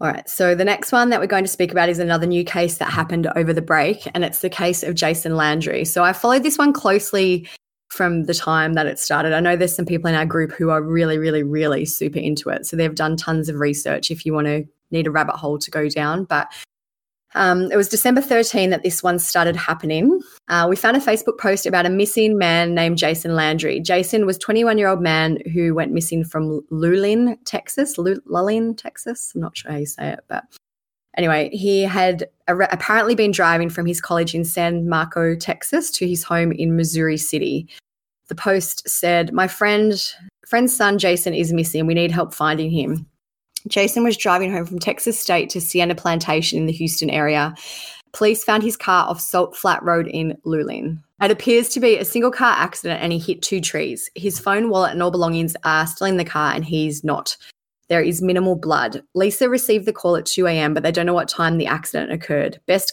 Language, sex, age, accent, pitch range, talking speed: English, female, 20-39, Australian, 160-195 Hz, 215 wpm